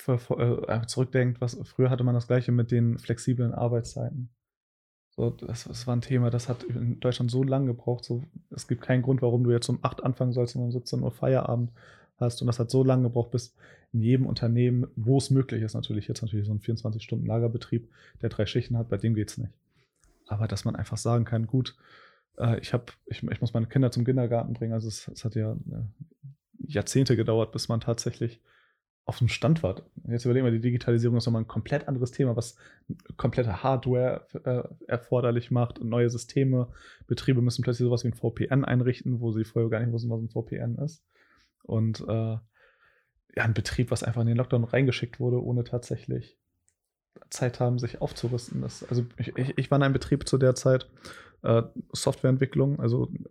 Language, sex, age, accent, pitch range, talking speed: German, male, 20-39, German, 115-130 Hz, 195 wpm